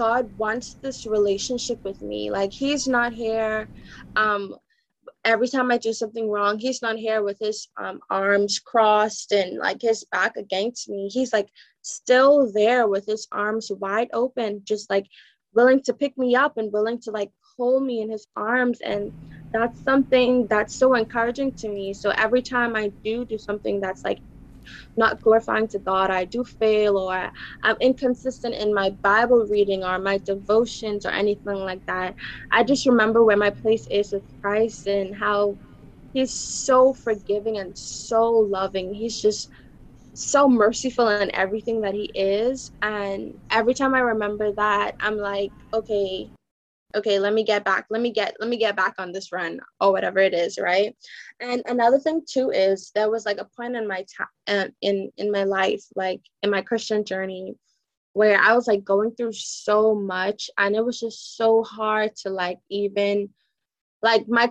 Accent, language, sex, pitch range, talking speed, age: American, English, female, 200-235 Hz, 175 wpm, 20-39